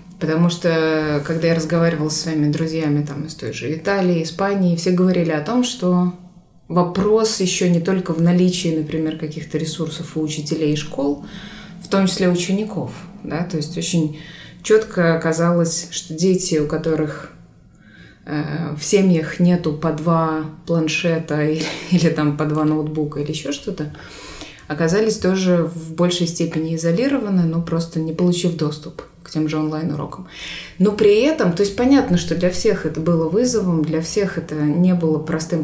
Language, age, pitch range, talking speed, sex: Russian, 20-39, 160-190 Hz, 160 wpm, female